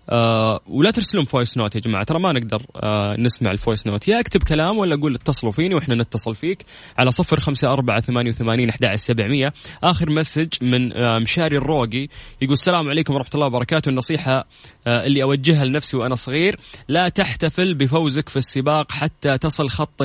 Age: 20-39